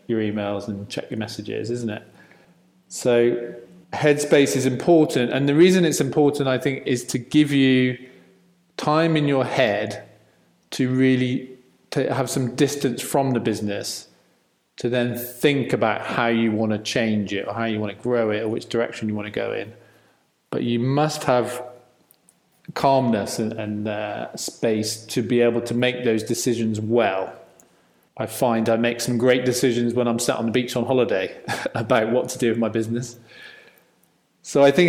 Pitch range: 110-135 Hz